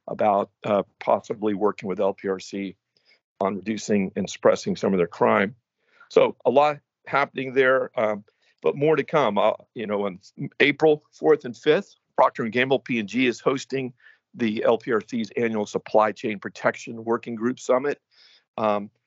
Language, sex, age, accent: English, male, 50-69, American